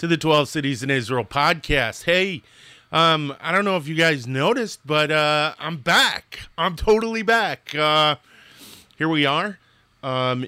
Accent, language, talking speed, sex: American, English, 160 wpm, male